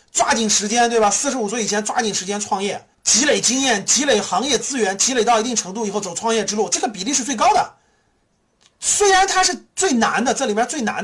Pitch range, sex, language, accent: 210-305 Hz, male, Chinese, native